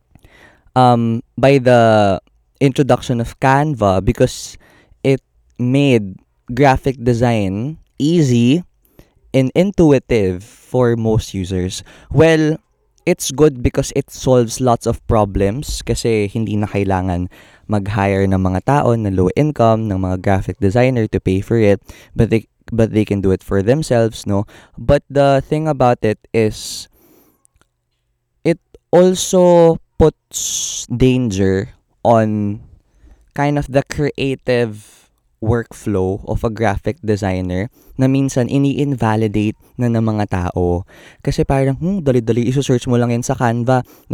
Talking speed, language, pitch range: 125 wpm, Filipino, 105-140 Hz